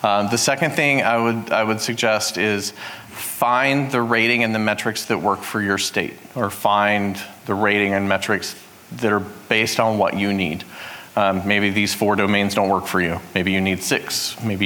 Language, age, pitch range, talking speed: English, 40-59, 100-125 Hz, 195 wpm